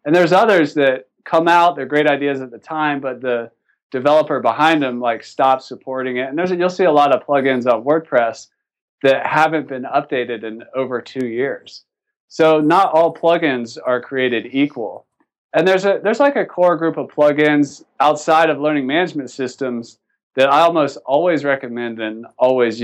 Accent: American